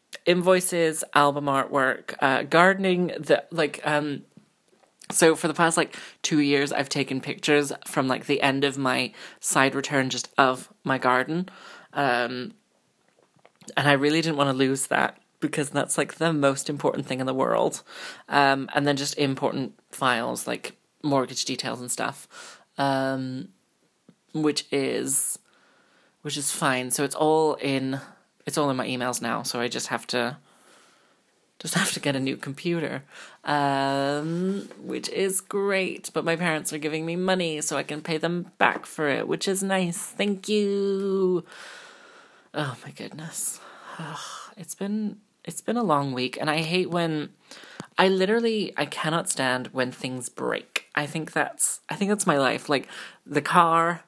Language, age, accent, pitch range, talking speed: English, 20-39, British, 135-175 Hz, 160 wpm